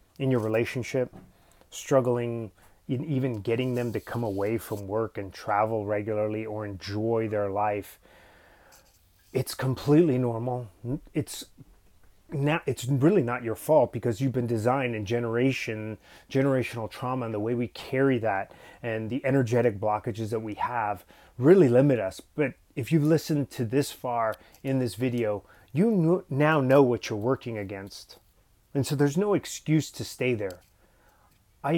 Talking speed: 150 wpm